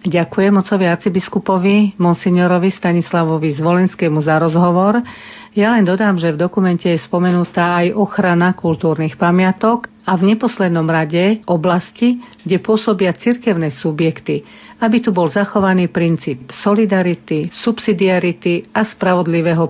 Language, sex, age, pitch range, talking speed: Slovak, female, 50-69, 165-200 Hz, 115 wpm